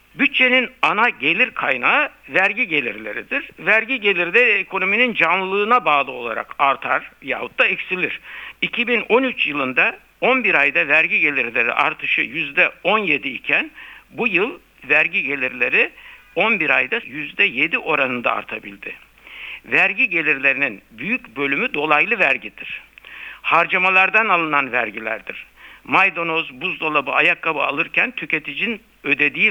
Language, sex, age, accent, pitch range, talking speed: Turkish, male, 60-79, native, 150-235 Hz, 100 wpm